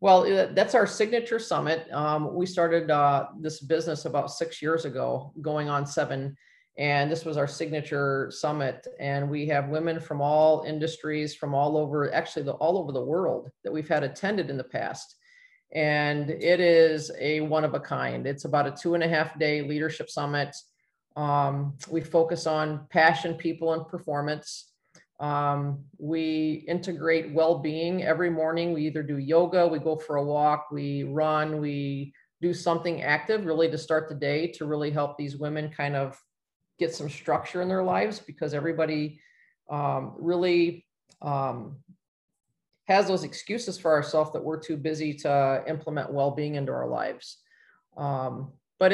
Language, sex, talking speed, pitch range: English, male, 165 wpm, 145-165 Hz